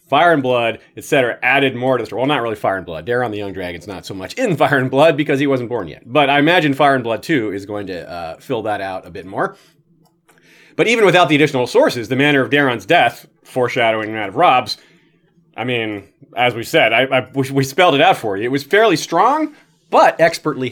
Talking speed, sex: 240 wpm, male